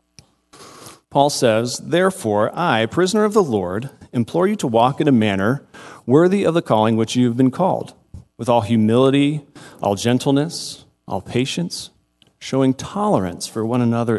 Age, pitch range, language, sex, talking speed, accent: 40-59, 90-140 Hz, English, male, 150 wpm, American